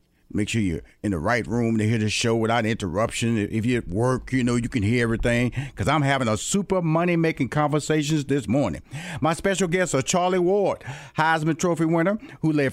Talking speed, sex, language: 205 wpm, male, English